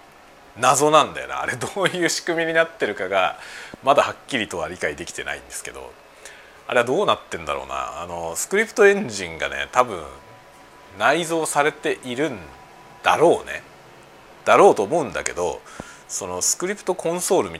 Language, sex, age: Japanese, male, 40-59